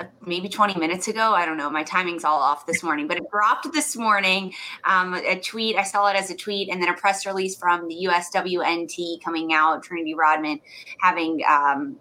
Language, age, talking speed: English, 20-39, 225 wpm